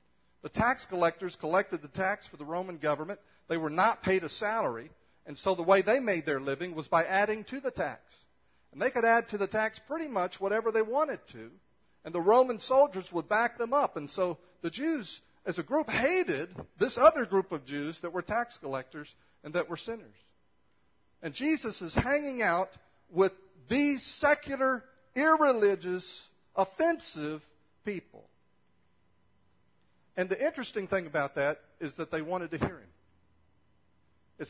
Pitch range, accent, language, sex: 140-205 Hz, American, English, male